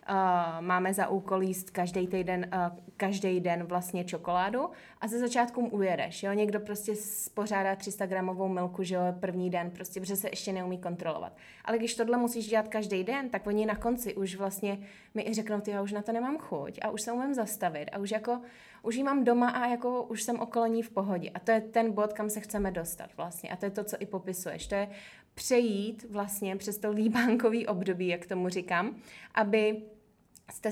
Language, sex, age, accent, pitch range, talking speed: Czech, female, 20-39, native, 180-215 Hz, 200 wpm